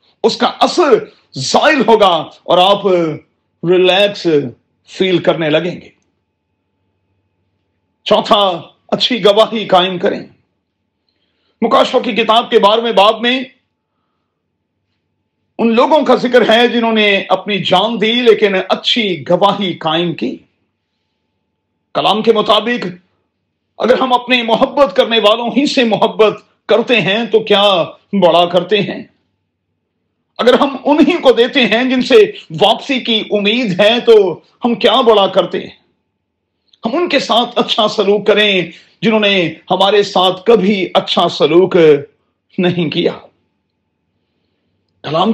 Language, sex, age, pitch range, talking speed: Urdu, male, 40-59, 175-230 Hz, 125 wpm